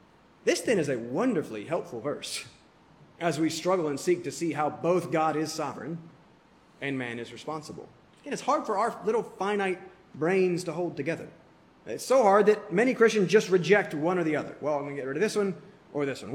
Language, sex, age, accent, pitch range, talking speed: English, male, 30-49, American, 145-195 Hz, 215 wpm